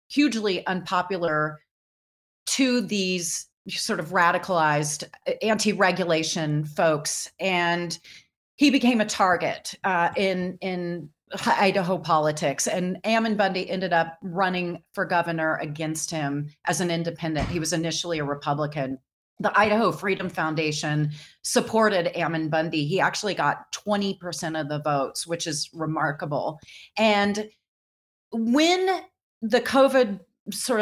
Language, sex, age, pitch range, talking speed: English, female, 30-49, 165-205 Hz, 115 wpm